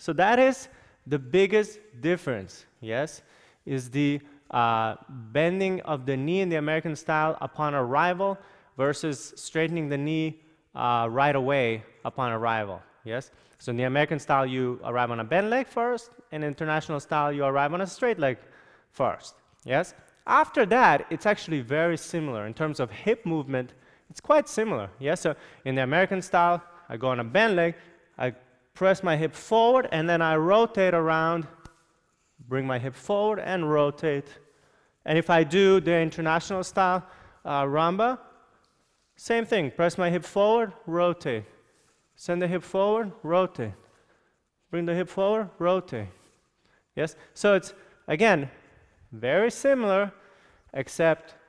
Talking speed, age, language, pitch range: 150 wpm, 20-39, English, 135-185 Hz